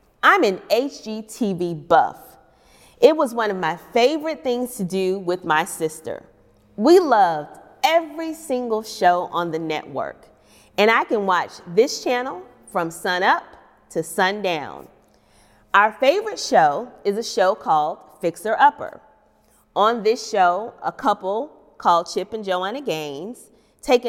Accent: American